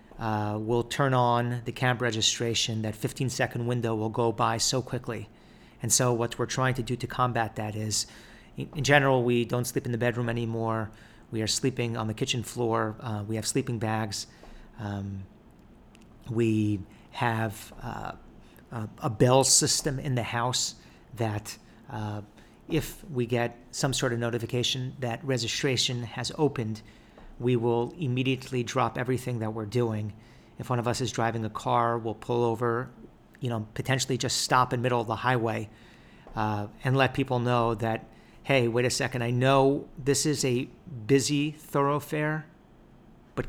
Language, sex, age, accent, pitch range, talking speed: English, male, 40-59, American, 115-130 Hz, 165 wpm